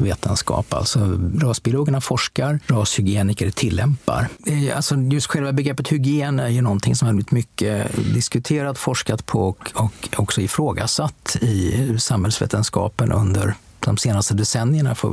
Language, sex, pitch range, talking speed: English, male, 105-135 Hz, 130 wpm